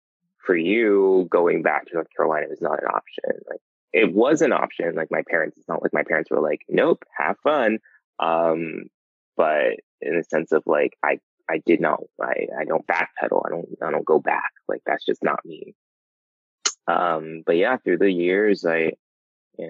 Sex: male